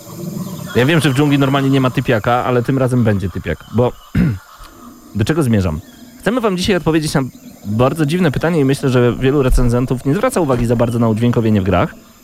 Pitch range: 110-140 Hz